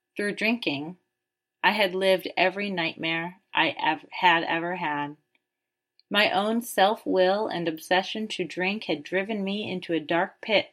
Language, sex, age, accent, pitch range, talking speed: English, female, 30-49, American, 160-200 Hz, 145 wpm